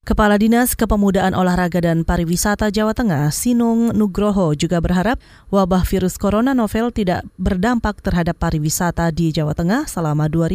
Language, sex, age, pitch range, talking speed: Indonesian, female, 20-39, 185-230 Hz, 135 wpm